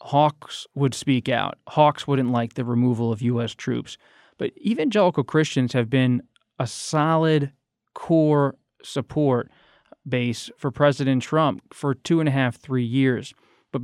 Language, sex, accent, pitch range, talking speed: English, male, American, 125-145 Hz, 145 wpm